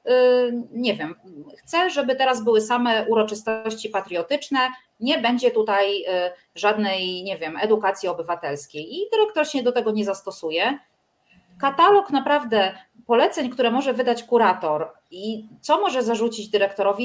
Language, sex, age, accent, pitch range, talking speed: Polish, female, 30-49, native, 195-255 Hz, 125 wpm